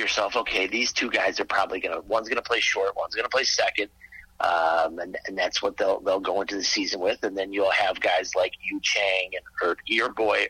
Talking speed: 235 wpm